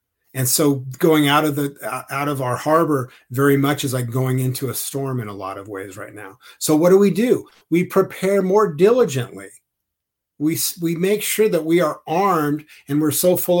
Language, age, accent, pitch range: English, 50-69, American, 145-180 Hz